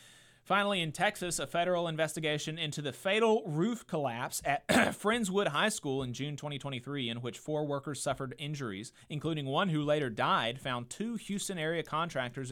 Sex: male